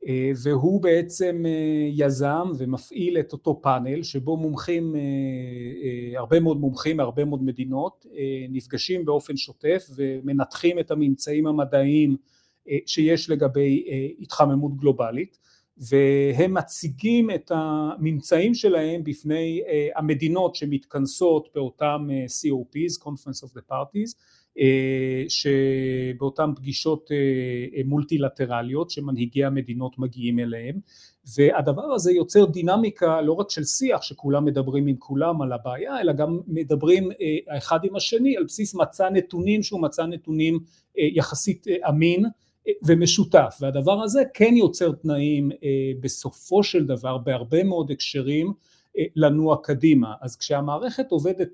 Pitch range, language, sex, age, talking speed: 135-170 Hz, Hebrew, male, 40-59, 110 wpm